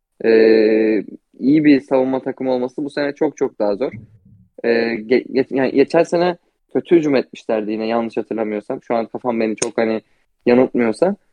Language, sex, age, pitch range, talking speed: Turkish, male, 20-39, 115-135 Hz, 165 wpm